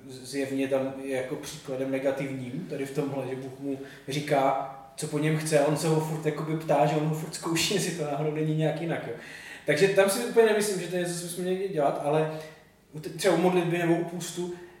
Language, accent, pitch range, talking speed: Czech, native, 155-180 Hz, 225 wpm